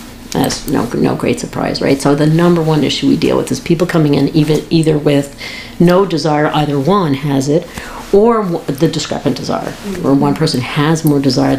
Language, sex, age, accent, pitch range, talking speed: English, female, 50-69, American, 145-180 Hz, 190 wpm